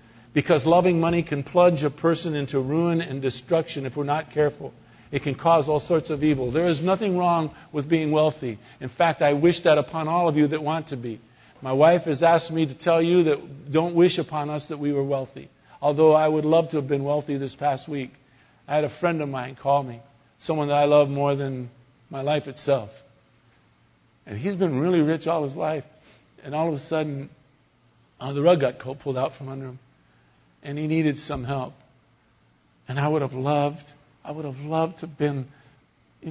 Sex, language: male, English